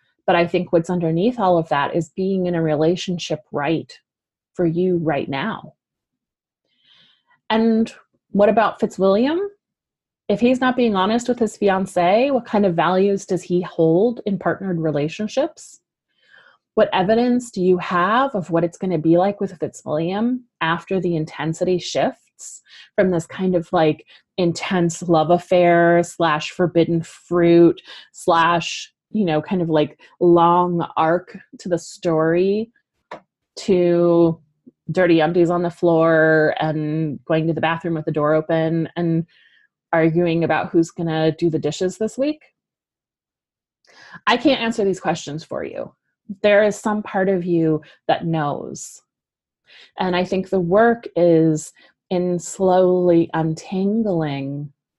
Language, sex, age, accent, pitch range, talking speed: English, female, 30-49, American, 165-195 Hz, 140 wpm